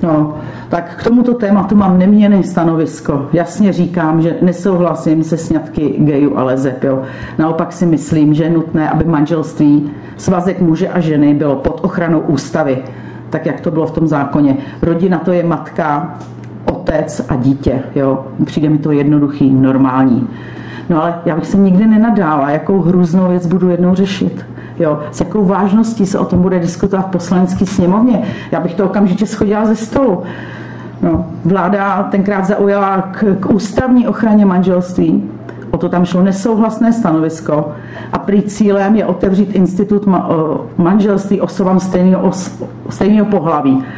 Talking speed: 150 wpm